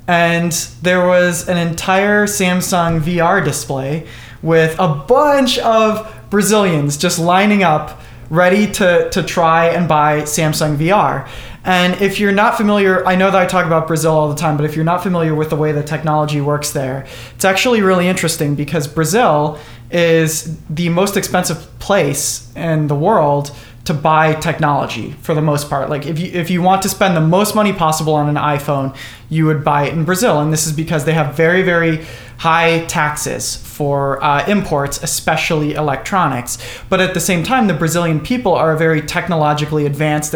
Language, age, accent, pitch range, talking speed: English, 20-39, American, 150-185 Hz, 180 wpm